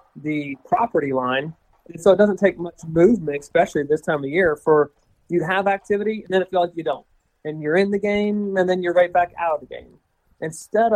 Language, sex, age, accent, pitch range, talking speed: English, male, 30-49, American, 140-175 Hz, 220 wpm